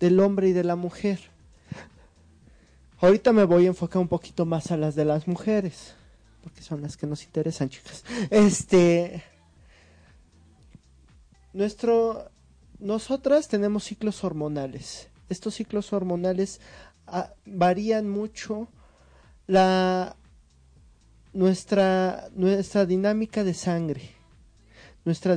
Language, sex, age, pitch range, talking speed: Spanish, male, 30-49, 150-195 Hz, 105 wpm